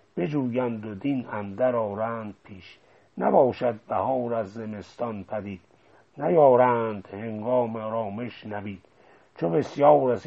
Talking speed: 105 wpm